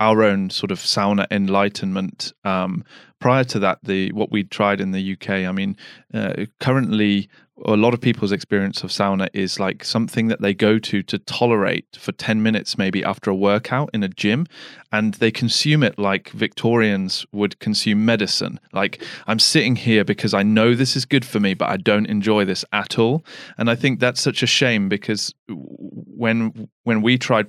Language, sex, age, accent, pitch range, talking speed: English, male, 20-39, British, 100-115 Hz, 190 wpm